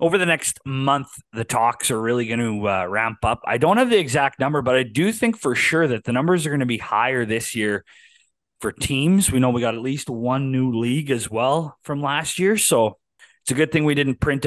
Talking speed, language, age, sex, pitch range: 245 wpm, English, 30-49, male, 120-155 Hz